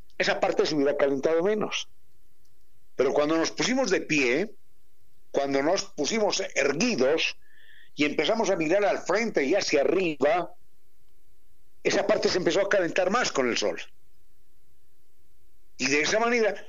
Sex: male